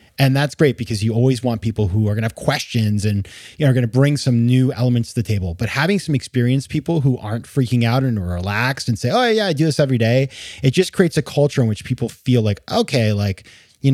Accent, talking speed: American, 255 wpm